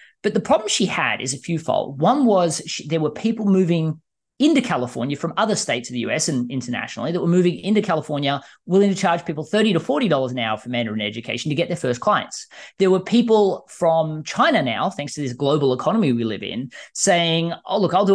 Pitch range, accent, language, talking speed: 140-205 Hz, Australian, English, 215 wpm